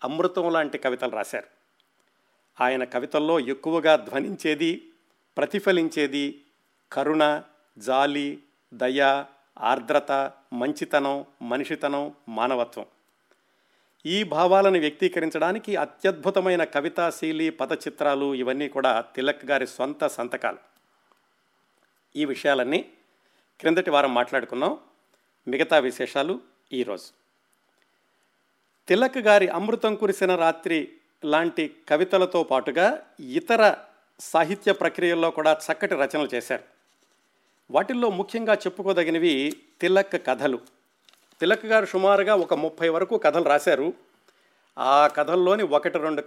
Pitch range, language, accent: 145-195 Hz, Telugu, native